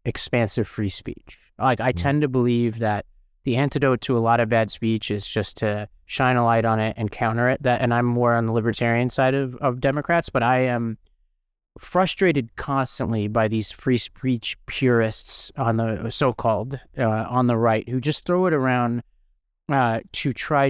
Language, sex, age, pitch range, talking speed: English, male, 30-49, 115-140 Hz, 185 wpm